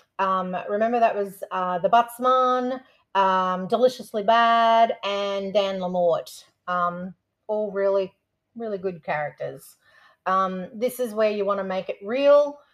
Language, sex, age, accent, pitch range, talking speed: English, female, 30-49, Australian, 185-230 Hz, 125 wpm